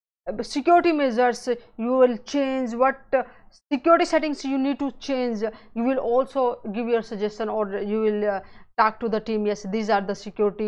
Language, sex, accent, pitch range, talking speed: English, female, Indian, 215-270 Hz, 175 wpm